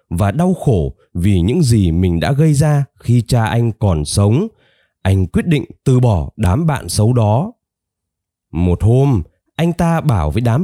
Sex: male